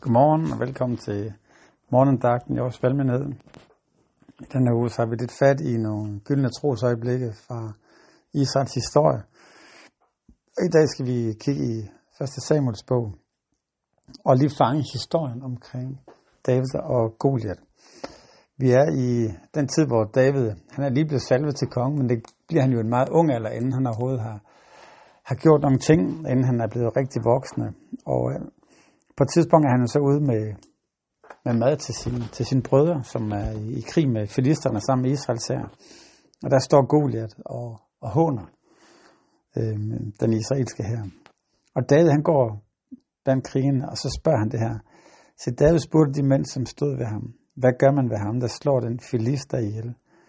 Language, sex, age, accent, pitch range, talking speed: Danish, male, 60-79, native, 115-140 Hz, 175 wpm